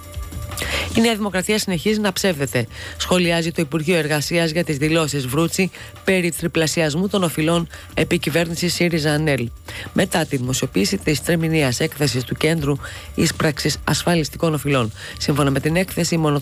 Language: Greek